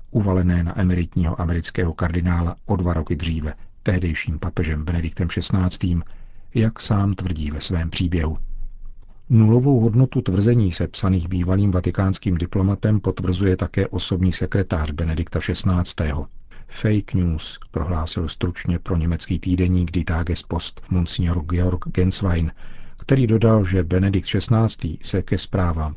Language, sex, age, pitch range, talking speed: Czech, male, 50-69, 85-110 Hz, 120 wpm